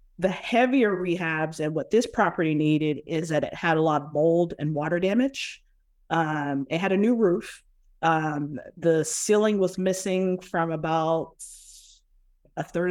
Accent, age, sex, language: American, 30-49, female, English